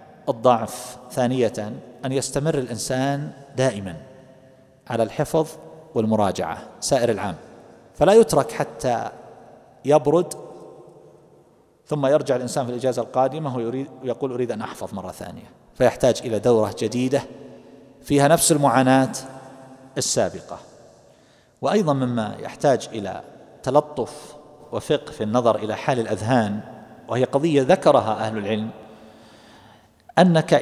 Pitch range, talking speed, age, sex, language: 125-160 Hz, 100 wpm, 40-59, male, Arabic